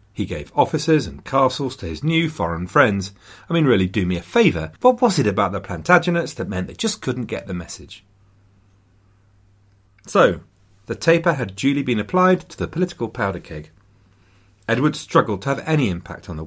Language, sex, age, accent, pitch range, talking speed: English, male, 40-59, British, 95-140 Hz, 185 wpm